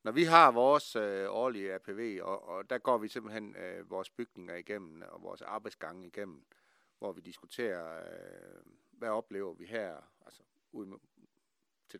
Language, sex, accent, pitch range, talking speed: Danish, male, native, 95-130 Hz, 165 wpm